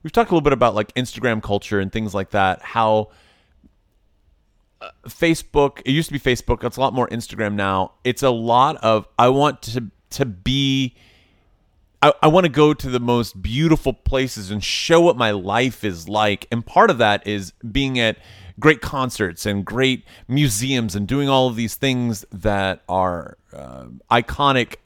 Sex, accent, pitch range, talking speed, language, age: male, American, 100-130 Hz, 180 wpm, English, 30-49